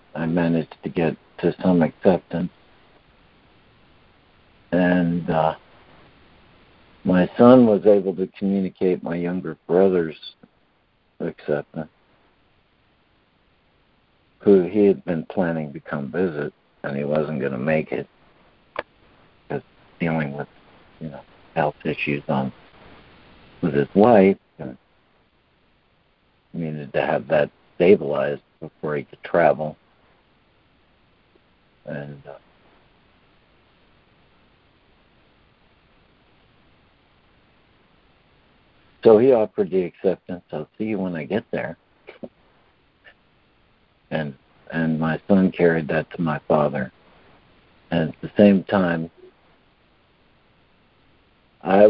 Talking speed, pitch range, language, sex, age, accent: 100 wpm, 75-95 Hz, English, male, 60-79, American